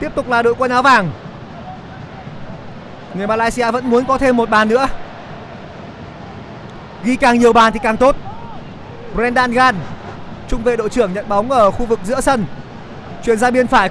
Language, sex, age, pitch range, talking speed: Vietnamese, male, 20-39, 220-260 Hz, 175 wpm